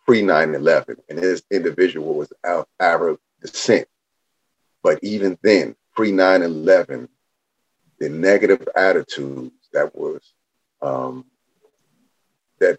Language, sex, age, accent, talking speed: English, male, 40-59, American, 90 wpm